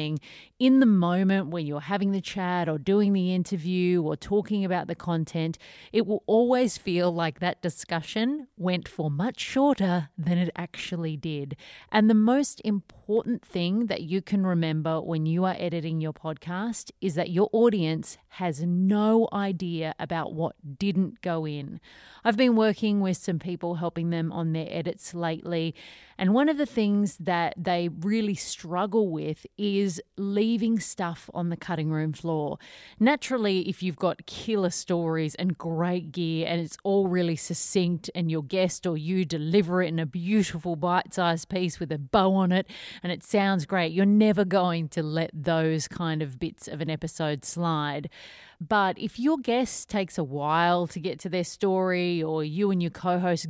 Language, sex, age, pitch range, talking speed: English, female, 30-49, 165-200 Hz, 175 wpm